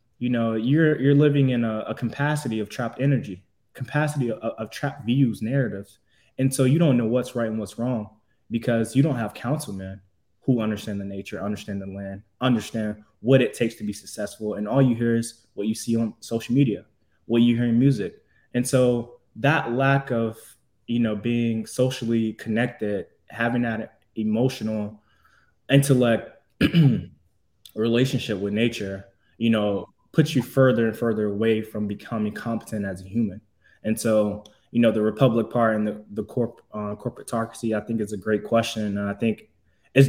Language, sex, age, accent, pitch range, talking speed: English, male, 20-39, American, 105-125 Hz, 175 wpm